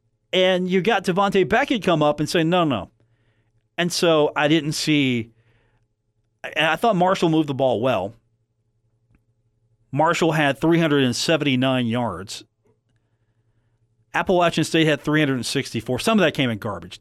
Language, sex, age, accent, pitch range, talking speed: English, male, 40-59, American, 115-145 Hz, 135 wpm